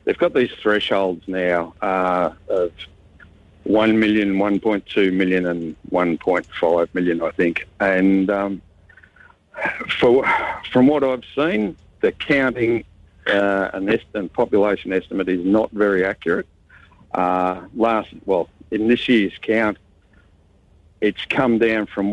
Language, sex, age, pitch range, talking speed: English, male, 60-79, 95-110 Hz, 120 wpm